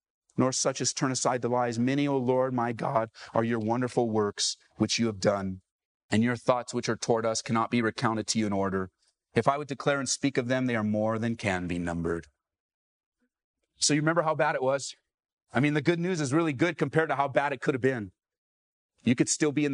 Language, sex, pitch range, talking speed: English, male, 110-150 Hz, 235 wpm